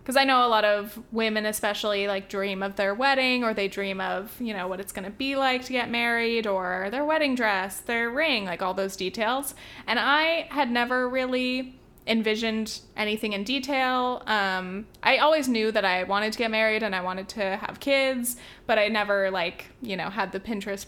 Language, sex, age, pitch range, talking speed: English, female, 20-39, 200-245 Hz, 205 wpm